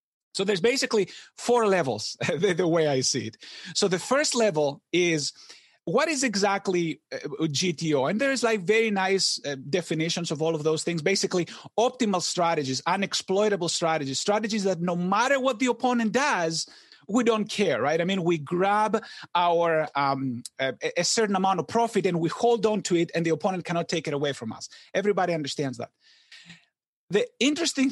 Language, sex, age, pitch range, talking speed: English, male, 30-49, 165-225 Hz, 175 wpm